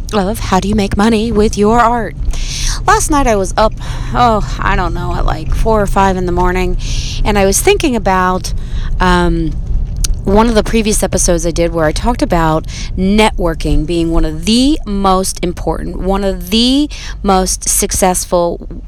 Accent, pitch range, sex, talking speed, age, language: American, 160-210 Hz, female, 175 wpm, 30-49, English